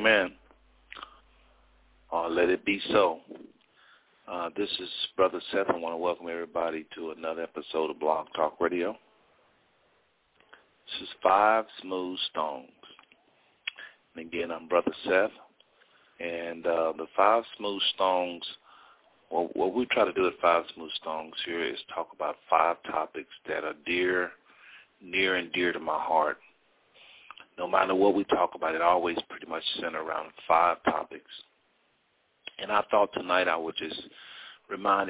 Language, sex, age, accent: English, male, 50-69, American